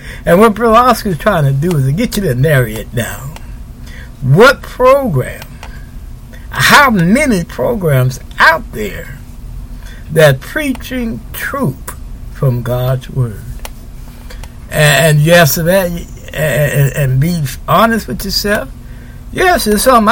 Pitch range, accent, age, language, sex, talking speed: 130-200 Hz, American, 60-79, English, male, 120 wpm